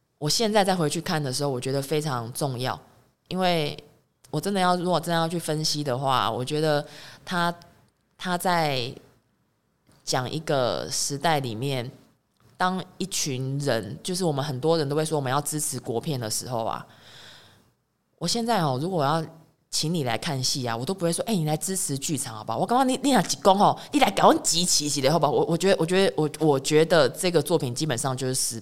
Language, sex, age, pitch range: Chinese, female, 20-39, 135-180 Hz